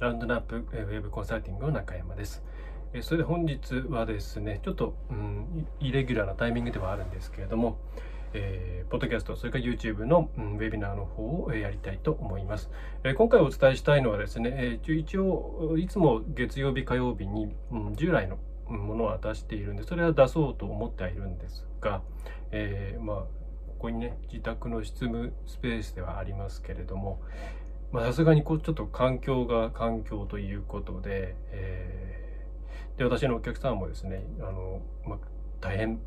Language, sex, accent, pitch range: Japanese, male, native, 95-125 Hz